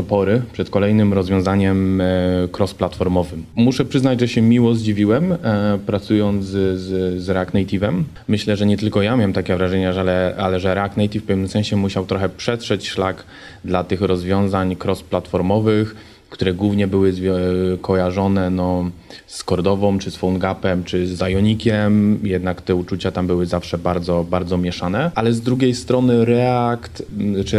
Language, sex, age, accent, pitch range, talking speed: Polish, male, 20-39, native, 95-115 Hz, 150 wpm